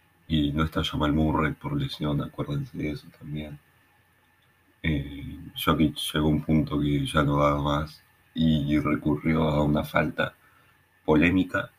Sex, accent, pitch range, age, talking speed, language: male, Argentinian, 75-85 Hz, 30-49, 150 wpm, Spanish